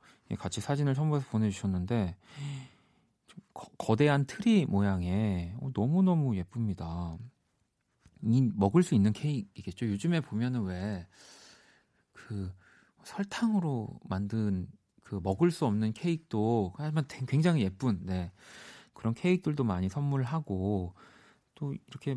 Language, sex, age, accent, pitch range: Korean, male, 40-59, native, 95-140 Hz